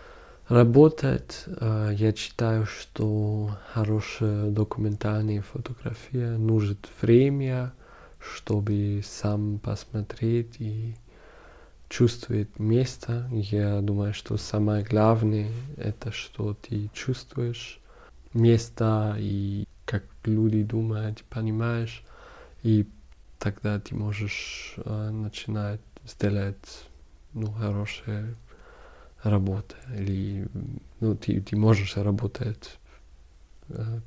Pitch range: 105-115 Hz